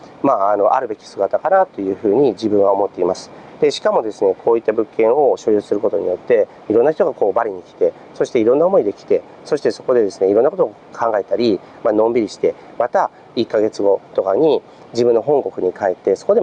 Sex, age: male, 40-59